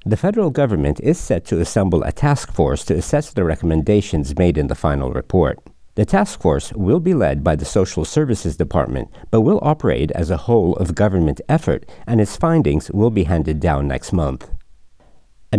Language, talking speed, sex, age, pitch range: English, 190 wpm, male, 60-79, 80-110 Hz